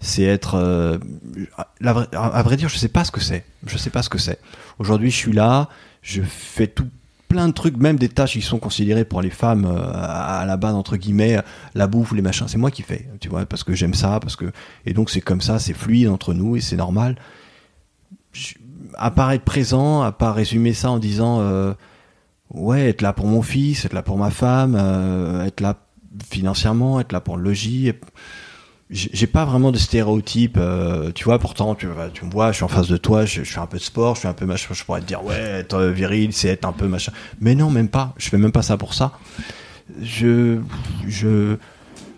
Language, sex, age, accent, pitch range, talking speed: French, male, 30-49, French, 95-120 Hz, 235 wpm